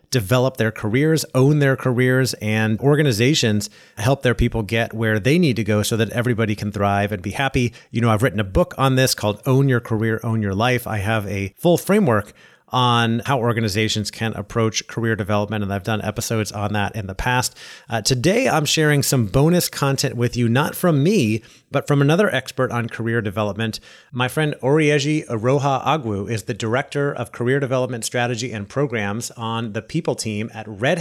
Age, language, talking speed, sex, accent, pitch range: 30-49, English, 195 wpm, male, American, 110-135 Hz